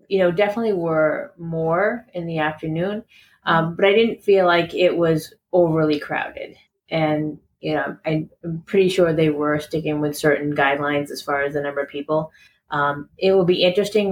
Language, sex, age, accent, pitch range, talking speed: English, female, 30-49, American, 155-180 Hz, 180 wpm